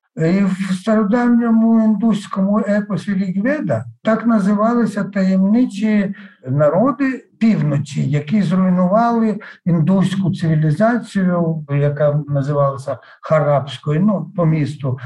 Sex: male